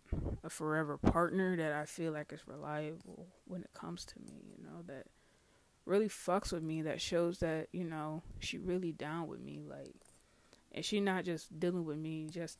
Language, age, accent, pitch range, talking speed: English, 20-39, American, 155-190 Hz, 190 wpm